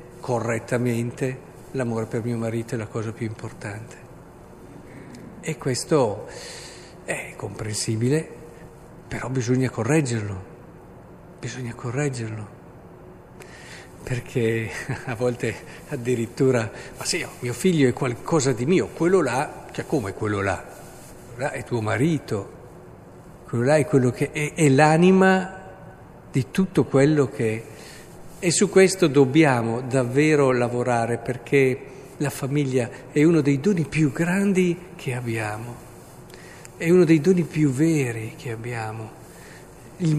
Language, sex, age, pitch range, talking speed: Italian, male, 50-69, 120-160 Hz, 120 wpm